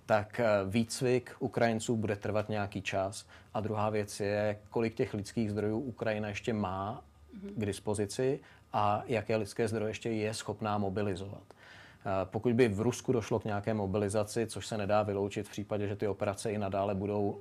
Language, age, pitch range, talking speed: Czech, 40-59, 100-110 Hz, 165 wpm